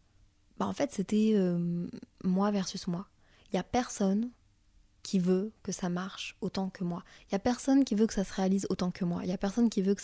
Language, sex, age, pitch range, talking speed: French, female, 20-39, 180-205 Hz, 240 wpm